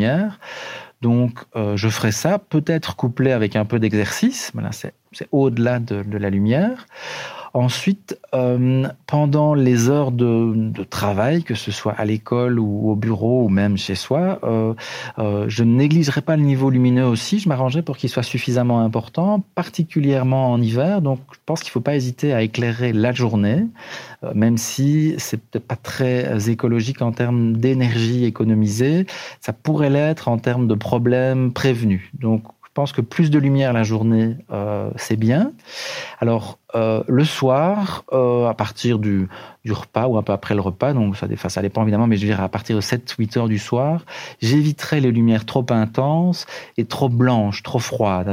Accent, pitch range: French, 110-135 Hz